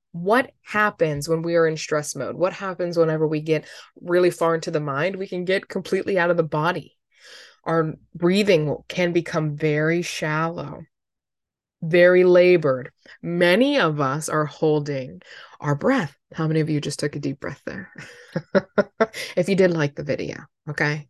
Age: 20-39